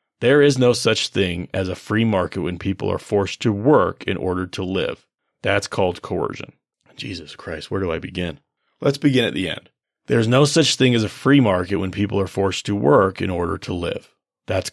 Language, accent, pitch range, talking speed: English, American, 95-125 Hz, 210 wpm